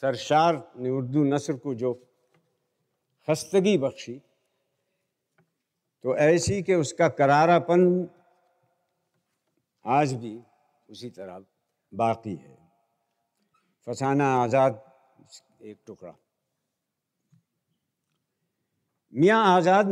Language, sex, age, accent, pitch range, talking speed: Hindi, male, 60-79, native, 115-155 Hz, 75 wpm